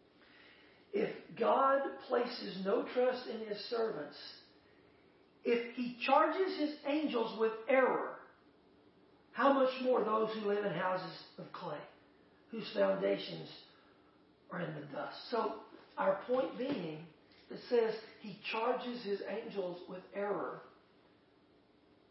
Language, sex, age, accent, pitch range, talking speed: English, male, 50-69, American, 190-260 Hz, 115 wpm